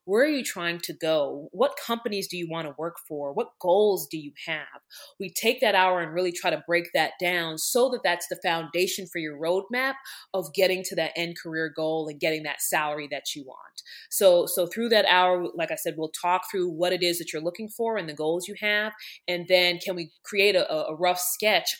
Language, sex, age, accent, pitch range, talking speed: English, female, 20-39, American, 165-195 Hz, 230 wpm